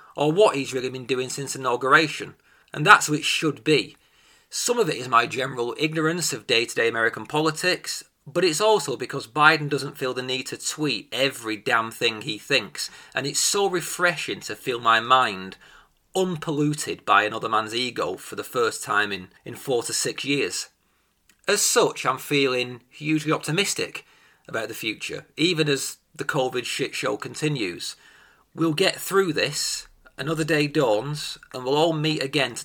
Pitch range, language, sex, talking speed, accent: 130-165 Hz, English, male, 170 wpm, British